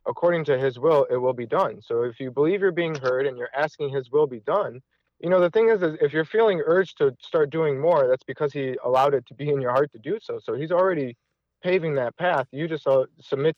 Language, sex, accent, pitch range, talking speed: English, male, American, 135-180 Hz, 255 wpm